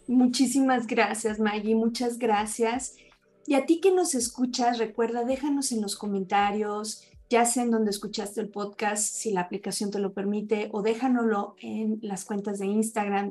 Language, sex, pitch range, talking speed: Spanish, female, 205-250 Hz, 160 wpm